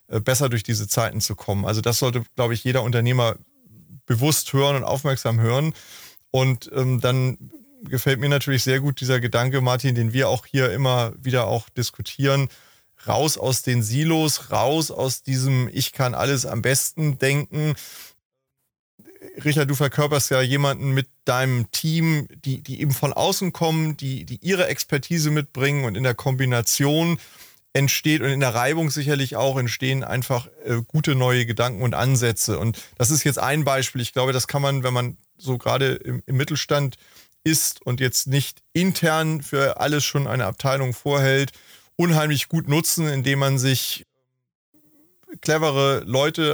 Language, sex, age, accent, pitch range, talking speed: German, male, 30-49, German, 125-145 Hz, 155 wpm